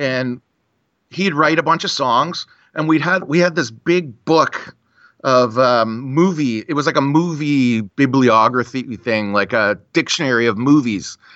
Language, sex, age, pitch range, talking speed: English, male, 40-59, 125-170 Hz, 160 wpm